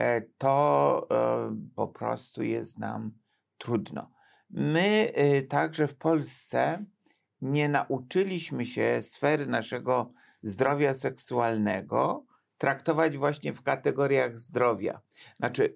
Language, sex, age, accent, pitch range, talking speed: Polish, male, 50-69, native, 115-145 Hz, 90 wpm